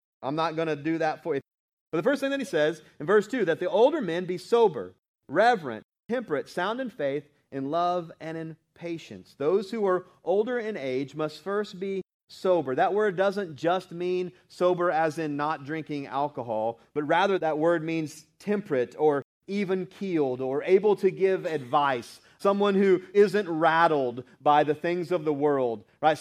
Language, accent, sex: English, American, male